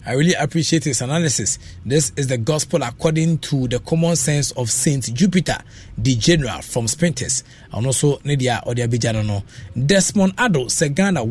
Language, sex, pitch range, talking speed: English, male, 120-160 Hz, 150 wpm